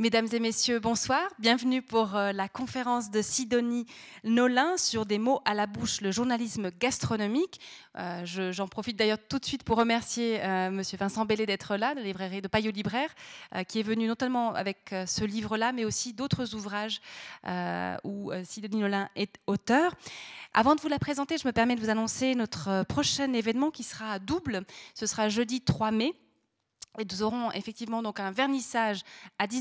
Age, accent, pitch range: 30-49, French, 210-250 Hz